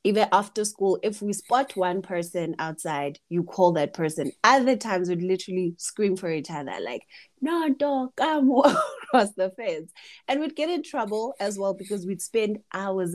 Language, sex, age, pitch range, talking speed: English, female, 20-39, 160-210 Hz, 180 wpm